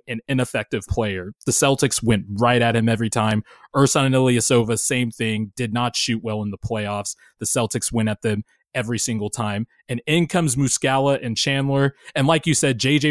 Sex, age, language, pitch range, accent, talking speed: male, 20-39, English, 115-140 Hz, American, 190 wpm